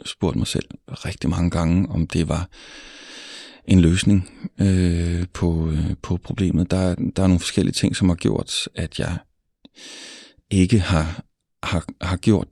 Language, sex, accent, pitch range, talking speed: Danish, male, native, 85-100 Hz, 155 wpm